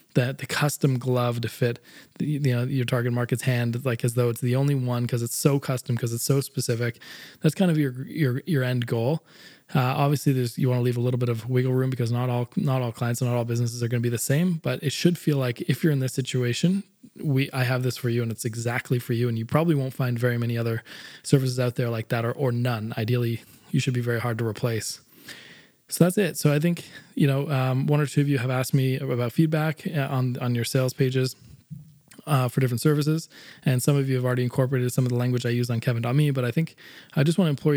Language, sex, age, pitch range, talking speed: English, male, 20-39, 120-140 Hz, 255 wpm